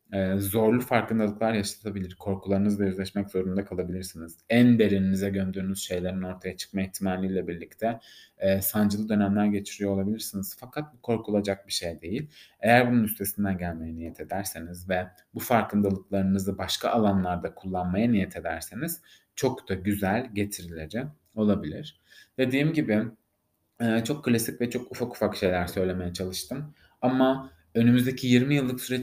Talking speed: 130 wpm